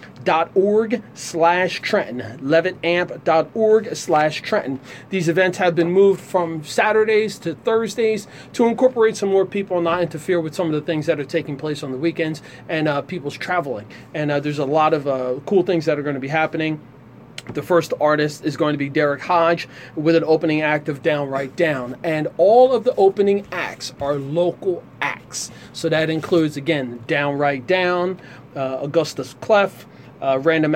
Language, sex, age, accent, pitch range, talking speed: English, male, 30-49, American, 145-180 Hz, 180 wpm